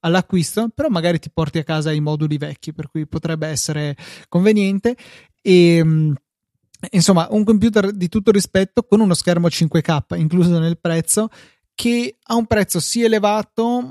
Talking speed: 155 wpm